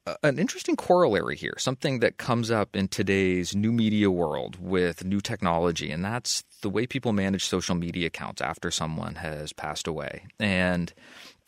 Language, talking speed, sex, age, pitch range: English, 160 wpm, male, 30-49, 90-110 Hz